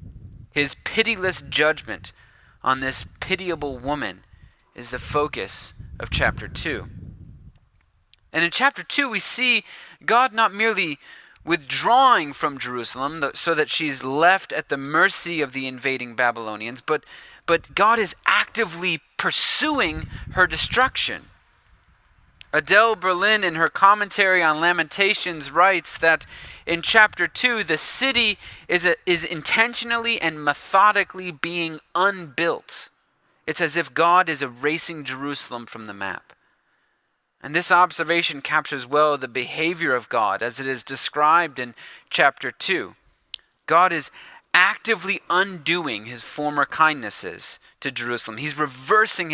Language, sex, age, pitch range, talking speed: English, male, 30-49, 135-185 Hz, 125 wpm